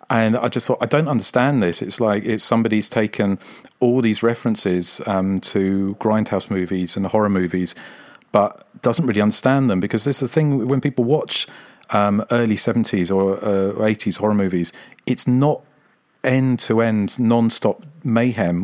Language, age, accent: English, 40-59, British